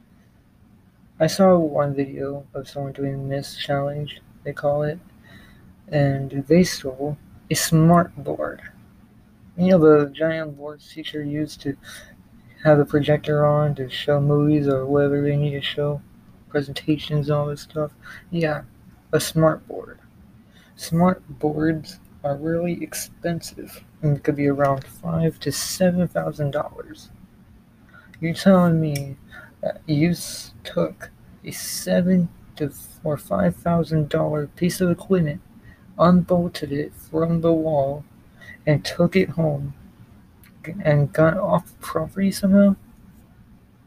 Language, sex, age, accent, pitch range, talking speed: English, male, 20-39, American, 140-165 Hz, 120 wpm